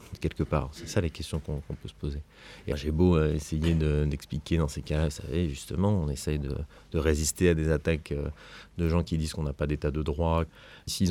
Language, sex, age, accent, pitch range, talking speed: French, male, 30-49, French, 75-85 Hz, 225 wpm